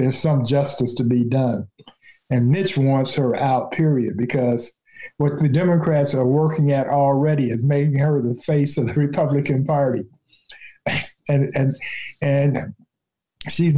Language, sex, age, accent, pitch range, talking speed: English, male, 50-69, American, 125-150 Hz, 140 wpm